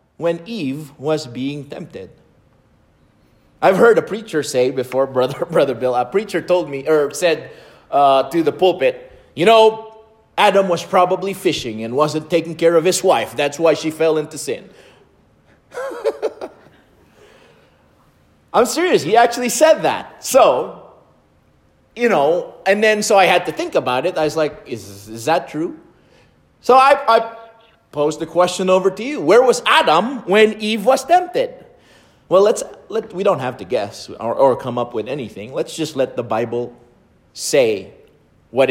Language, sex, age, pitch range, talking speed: English, male, 30-49, 130-220 Hz, 165 wpm